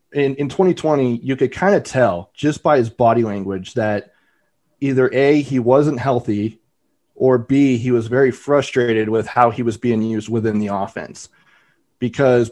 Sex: male